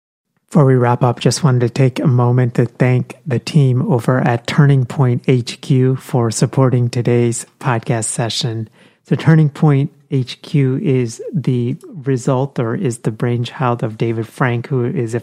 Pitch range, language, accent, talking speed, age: 115-140 Hz, English, American, 160 wpm, 30-49